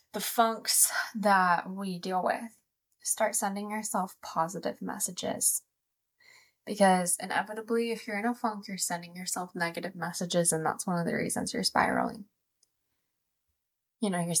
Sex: female